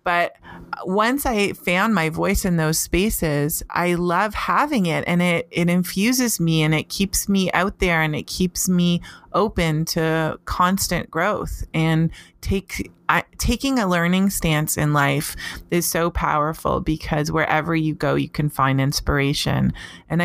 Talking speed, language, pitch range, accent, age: 155 wpm, English, 150-180 Hz, American, 30-49